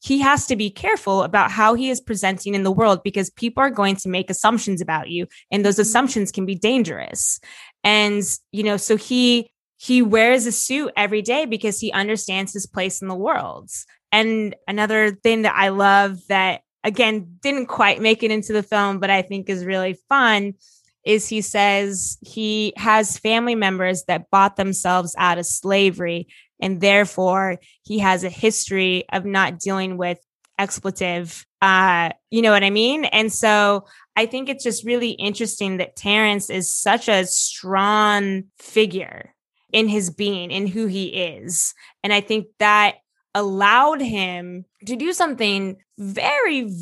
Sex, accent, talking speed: female, American, 165 wpm